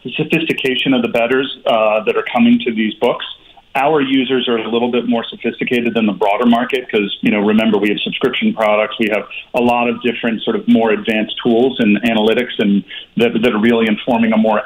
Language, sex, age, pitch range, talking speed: English, male, 40-59, 110-140 Hz, 215 wpm